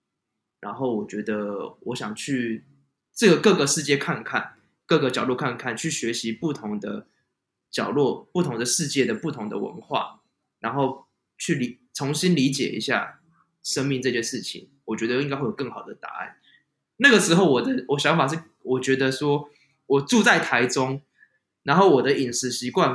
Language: Chinese